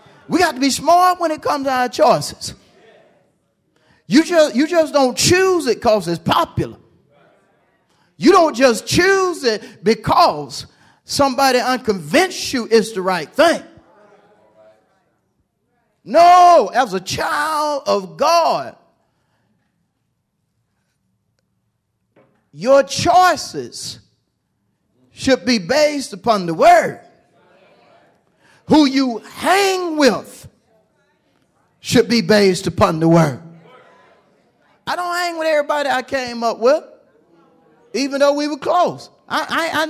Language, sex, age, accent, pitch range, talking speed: English, male, 40-59, American, 220-315 Hz, 110 wpm